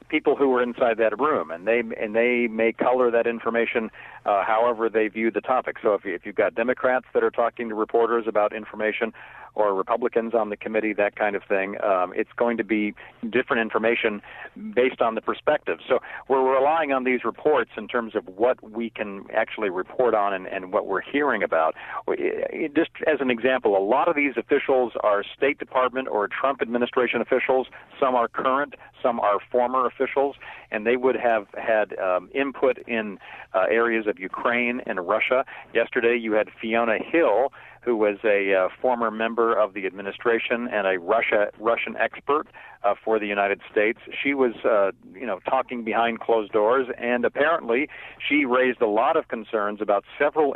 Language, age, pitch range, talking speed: English, 50-69, 110-125 Hz, 185 wpm